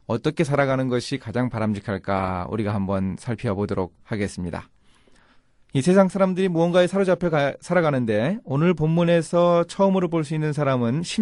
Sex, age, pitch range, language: male, 30-49, 115-170 Hz, Korean